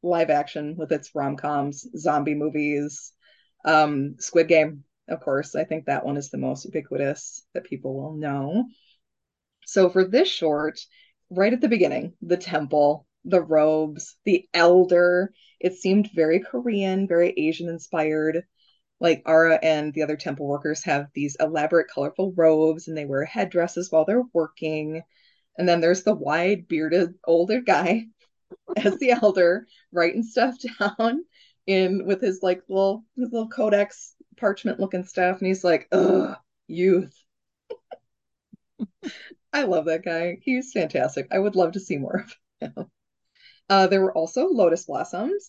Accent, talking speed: American, 150 wpm